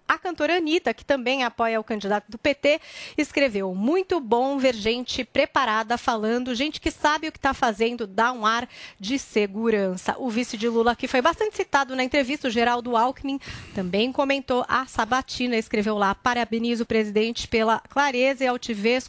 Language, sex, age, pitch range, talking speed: Portuguese, female, 30-49, 225-280 Hz, 175 wpm